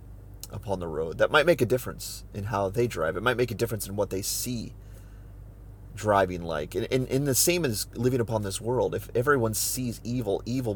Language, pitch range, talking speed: English, 100-110 Hz, 210 wpm